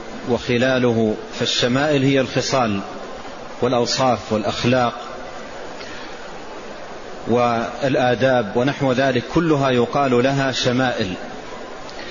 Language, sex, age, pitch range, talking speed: Arabic, male, 40-59, 120-135 Hz, 65 wpm